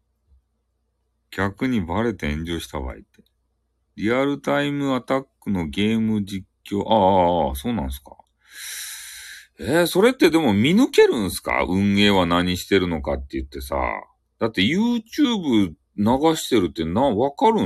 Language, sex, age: Japanese, male, 40-59